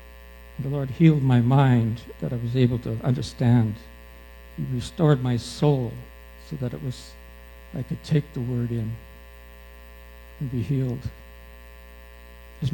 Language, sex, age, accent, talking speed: English, male, 60-79, American, 135 wpm